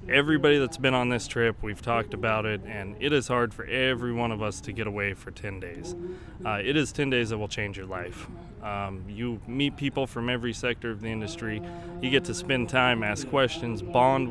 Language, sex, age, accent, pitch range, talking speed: English, male, 20-39, American, 110-130 Hz, 220 wpm